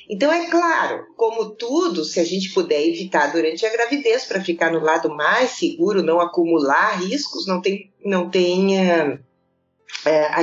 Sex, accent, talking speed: female, Brazilian, 150 wpm